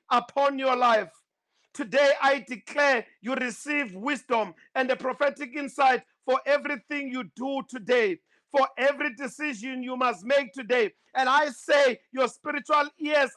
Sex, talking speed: male, 140 wpm